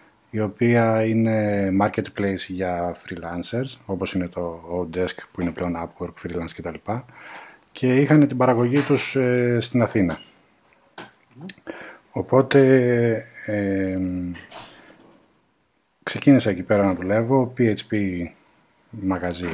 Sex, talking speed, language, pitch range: male, 100 wpm, Greek, 90-115 Hz